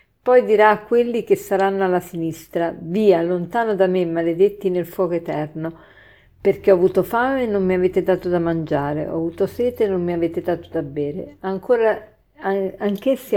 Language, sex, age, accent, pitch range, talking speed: Italian, female, 50-69, native, 170-215 Hz, 175 wpm